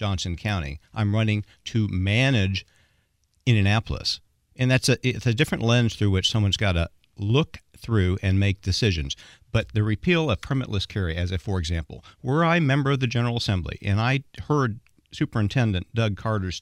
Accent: American